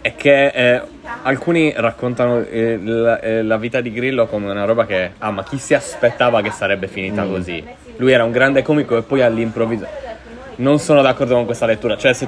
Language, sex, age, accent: Italian, male, 20-39, native